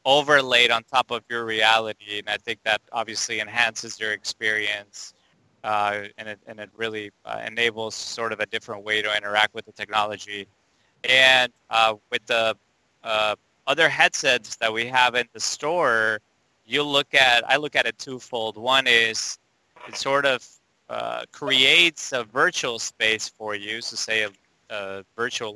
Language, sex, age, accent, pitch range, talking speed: English, male, 20-39, American, 105-125 Hz, 165 wpm